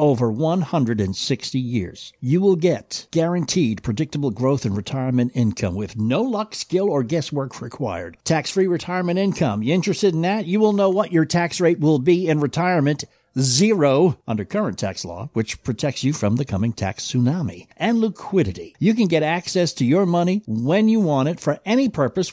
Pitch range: 115-175 Hz